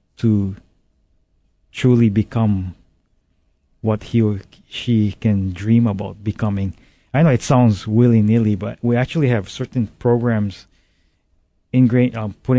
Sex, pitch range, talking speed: male, 100-120 Hz, 120 wpm